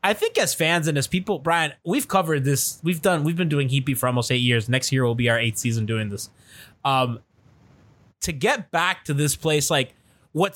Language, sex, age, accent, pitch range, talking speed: English, male, 20-39, American, 125-195 Hz, 220 wpm